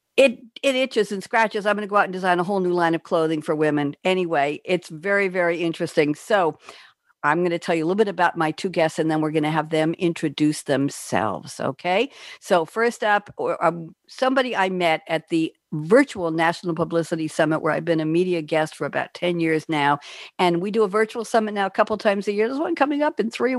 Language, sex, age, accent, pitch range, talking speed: English, female, 60-79, American, 160-210 Hz, 225 wpm